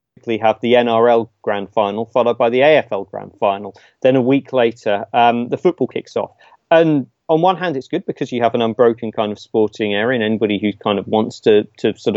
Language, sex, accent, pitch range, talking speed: English, male, British, 110-130 Hz, 215 wpm